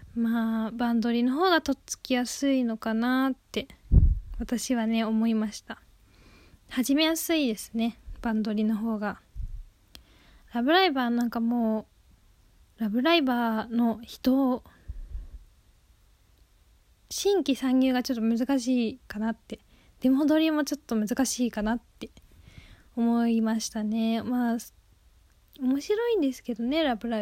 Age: 10-29